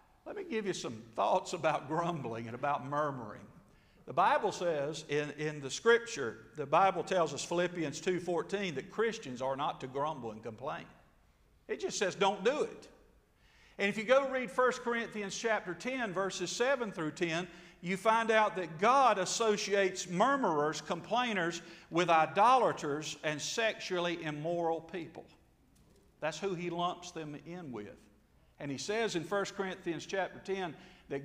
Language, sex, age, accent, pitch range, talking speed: English, male, 50-69, American, 150-200 Hz, 155 wpm